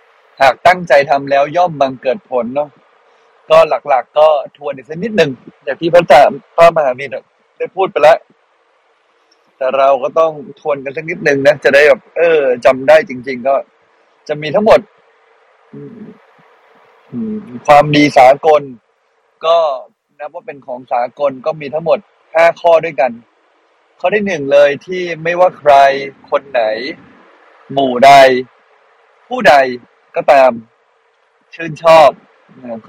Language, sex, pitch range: Thai, male, 135-215 Hz